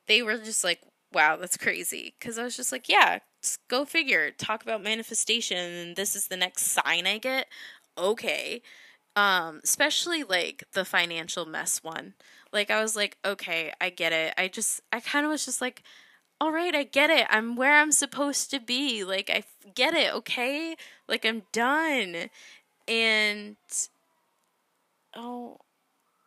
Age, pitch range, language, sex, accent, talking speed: 10-29, 185-265 Hz, English, female, American, 160 wpm